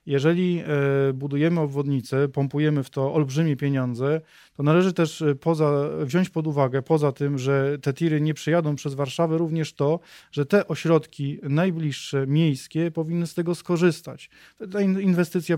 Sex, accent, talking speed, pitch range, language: male, native, 145 wpm, 145-165 Hz, Polish